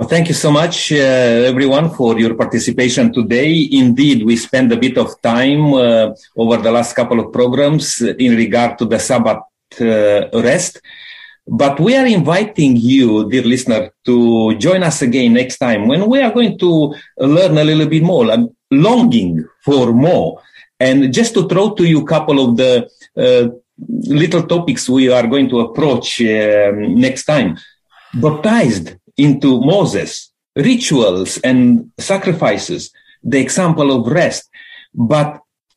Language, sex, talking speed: English, male, 150 wpm